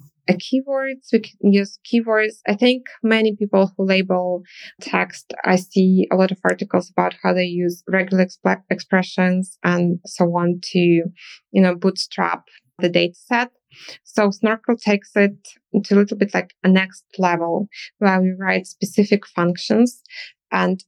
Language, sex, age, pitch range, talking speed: English, female, 20-39, 180-210 Hz, 155 wpm